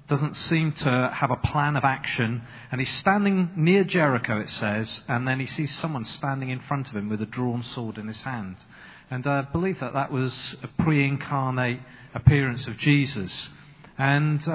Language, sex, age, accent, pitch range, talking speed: English, male, 40-59, British, 125-170 Hz, 185 wpm